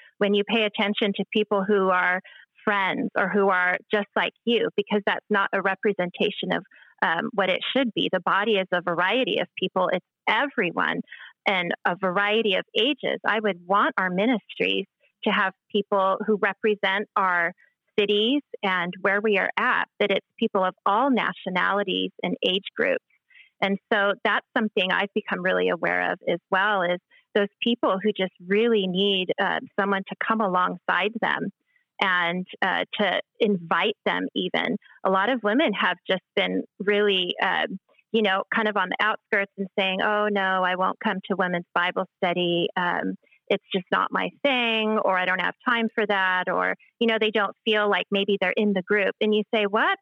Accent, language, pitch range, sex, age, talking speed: American, English, 185-220 Hz, female, 30-49, 180 wpm